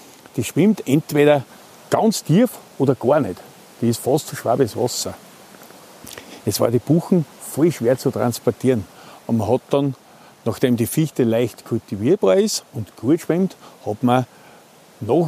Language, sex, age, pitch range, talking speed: German, male, 50-69, 125-175 Hz, 150 wpm